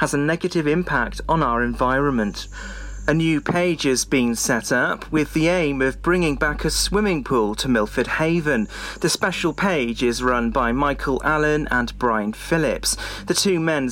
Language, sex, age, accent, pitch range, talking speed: English, male, 40-59, British, 130-165 Hz, 170 wpm